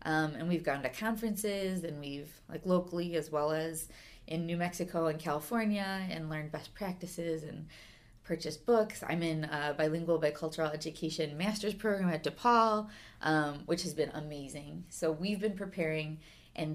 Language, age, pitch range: English, 20-39, 155-185 Hz